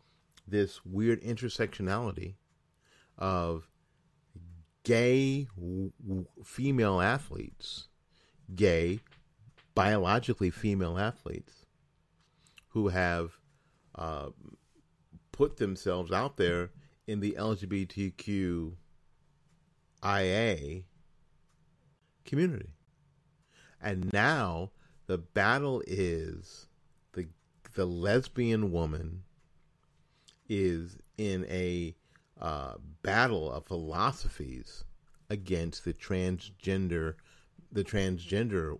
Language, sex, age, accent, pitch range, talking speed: English, male, 40-59, American, 85-130 Hz, 65 wpm